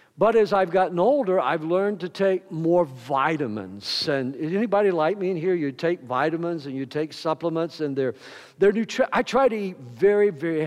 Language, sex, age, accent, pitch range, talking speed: English, male, 60-79, American, 150-205 Hz, 190 wpm